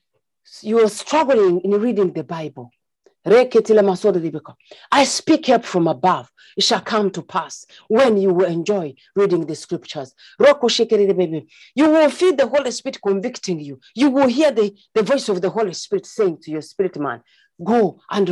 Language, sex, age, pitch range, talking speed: English, female, 40-59, 195-275 Hz, 160 wpm